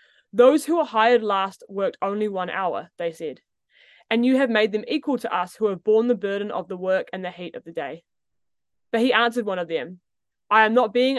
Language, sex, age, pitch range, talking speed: English, female, 20-39, 200-250 Hz, 230 wpm